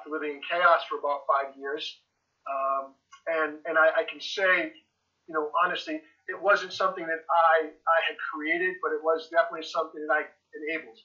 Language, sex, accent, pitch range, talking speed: English, male, American, 150-185 Hz, 180 wpm